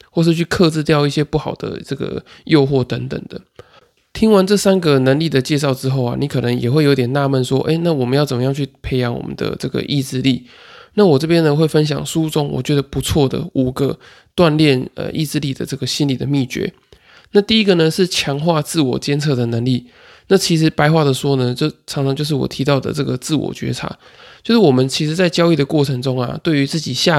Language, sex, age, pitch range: Chinese, male, 20-39, 135-165 Hz